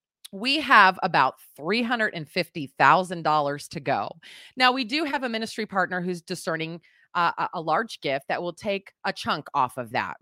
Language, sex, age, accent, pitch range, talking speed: English, female, 30-49, American, 155-220 Hz, 160 wpm